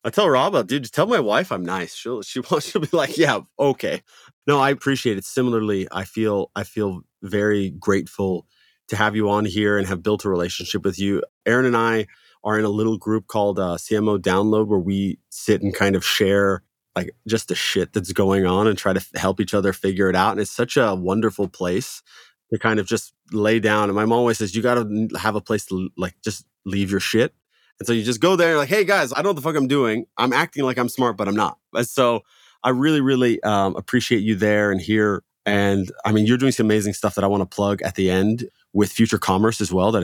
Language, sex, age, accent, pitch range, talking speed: English, male, 30-49, American, 100-120 Hz, 245 wpm